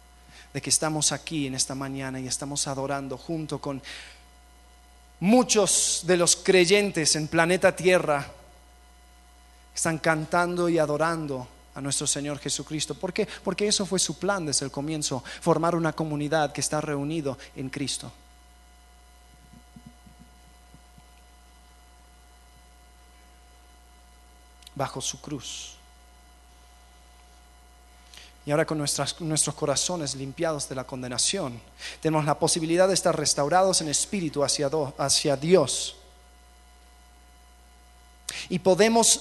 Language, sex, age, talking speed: Spanish, male, 30-49, 105 wpm